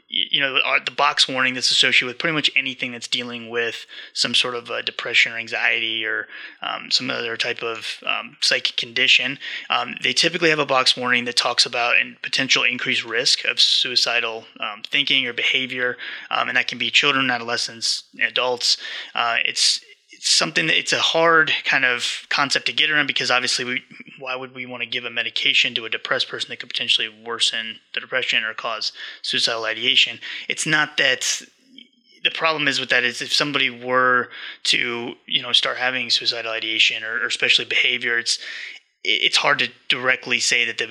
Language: English